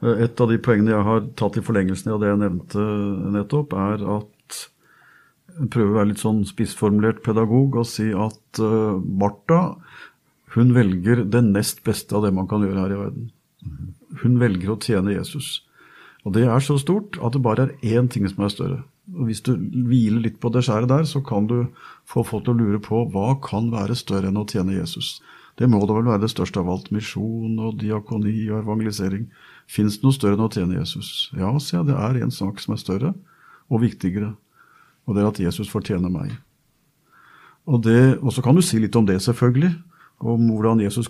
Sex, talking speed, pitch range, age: male, 205 wpm, 105-125 Hz, 50-69